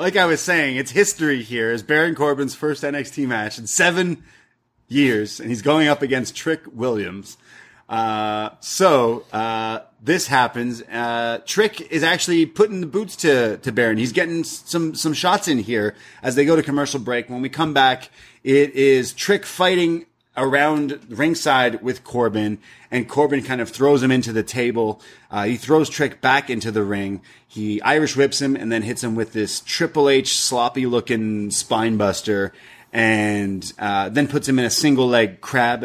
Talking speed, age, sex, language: 175 wpm, 30-49, male, English